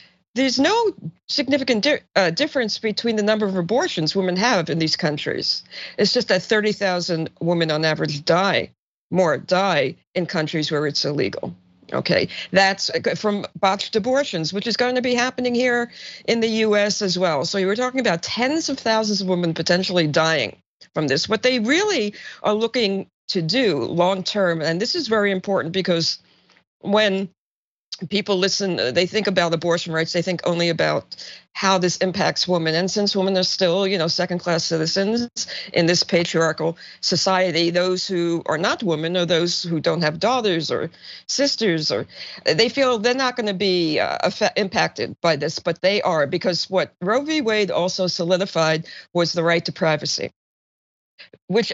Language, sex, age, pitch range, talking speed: English, female, 50-69, 170-215 Hz, 170 wpm